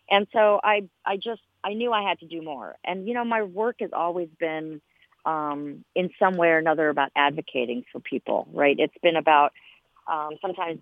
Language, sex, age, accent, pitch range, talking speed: English, female, 40-59, American, 155-195 Hz, 205 wpm